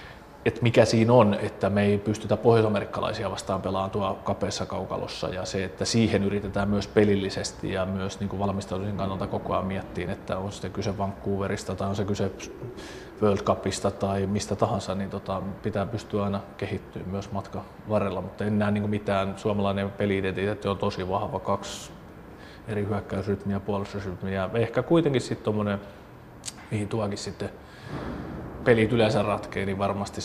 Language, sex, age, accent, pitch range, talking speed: Finnish, male, 30-49, native, 95-105 Hz, 160 wpm